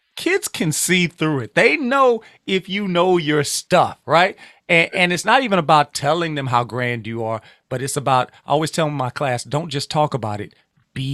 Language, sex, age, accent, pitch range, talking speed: English, male, 30-49, American, 135-175 Hz, 210 wpm